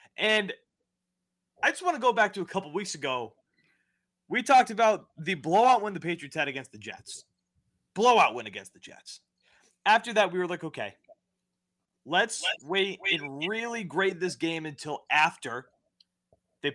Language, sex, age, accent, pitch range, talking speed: English, male, 20-39, American, 145-195 Hz, 160 wpm